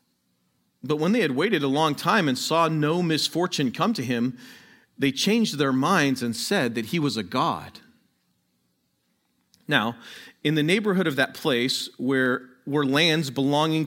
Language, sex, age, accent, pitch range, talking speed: English, male, 40-59, American, 110-155 Hz, 160 wpm